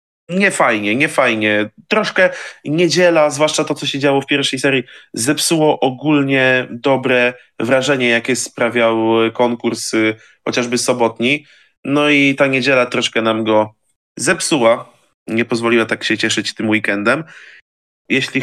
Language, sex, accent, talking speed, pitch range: Polish, male, native, 125 wpm, 115-145 Hz